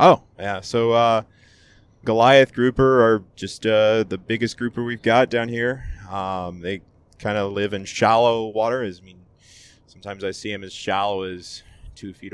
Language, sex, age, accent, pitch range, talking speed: English, male, 20-39, American, 95-120 Hz, 170 wpm